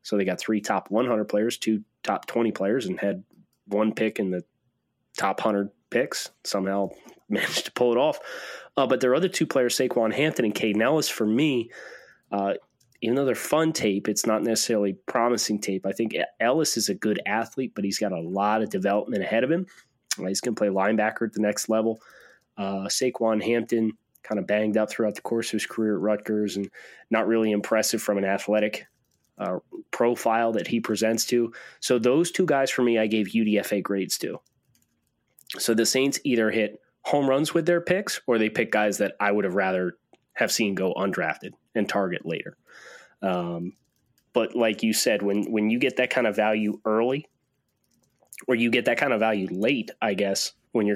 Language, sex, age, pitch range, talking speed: English, male, 20-39, 105-120 Hz, 195 wpm